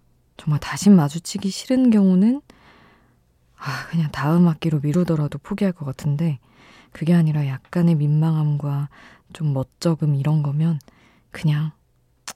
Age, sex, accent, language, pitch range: 20-39, female, native, Korean, 145-185 Hz